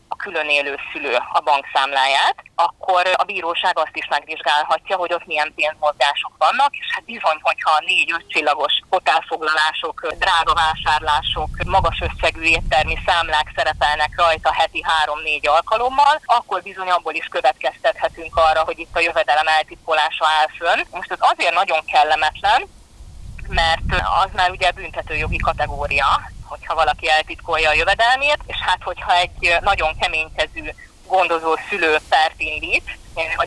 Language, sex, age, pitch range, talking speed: Hungarian, female, 20-39, 155-195 Hz, 130 wpm